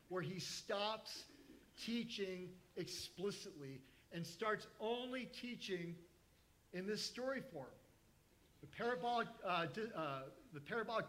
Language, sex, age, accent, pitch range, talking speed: English, male, 50-69, American, 145-225 Hz, 85 wpm